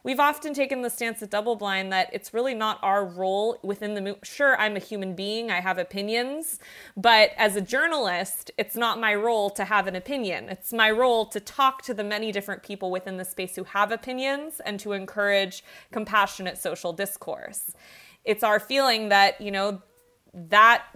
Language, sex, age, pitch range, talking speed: English, female, 20-39, 190-225 Hz, 185 wpm